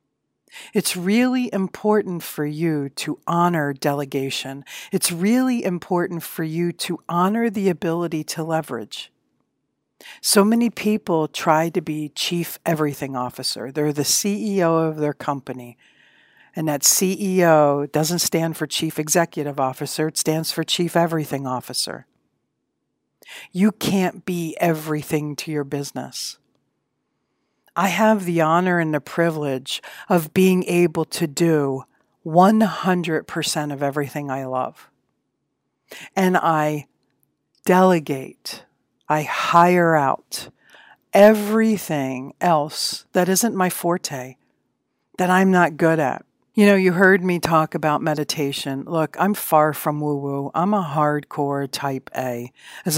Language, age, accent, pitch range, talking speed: English, 60-79, American, 145-180 Hz, 125 wpm